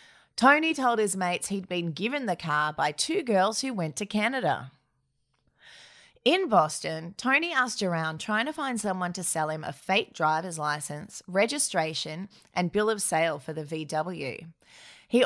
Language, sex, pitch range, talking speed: English, female, 165-225 Hz, 160 wpm